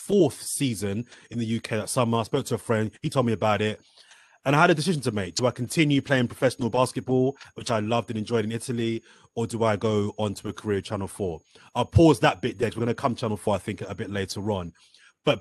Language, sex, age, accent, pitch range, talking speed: English, male, 30-49, British, 100-125 Hz, 255 wpm